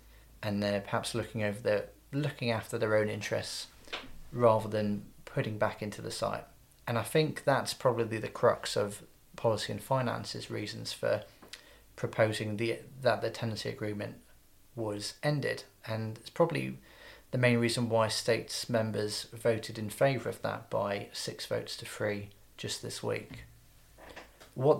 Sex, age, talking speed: male, 30-49, 150 wpm